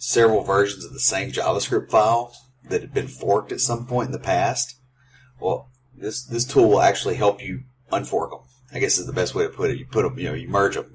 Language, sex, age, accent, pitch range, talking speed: English, male, 30-49, American, 115-130 Hz, 240 wpm